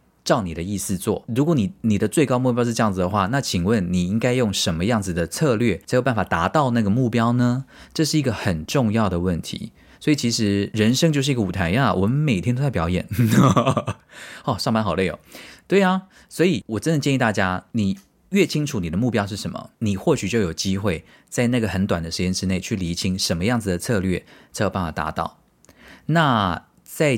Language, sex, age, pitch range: Chinese, male, 20-39, 90-120 Hz